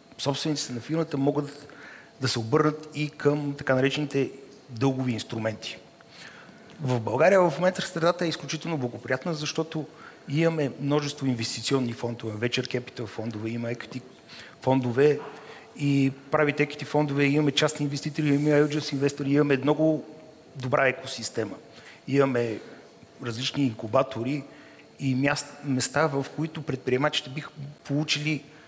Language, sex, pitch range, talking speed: Bulgarian, male, 120-150 Hz, 115 wpm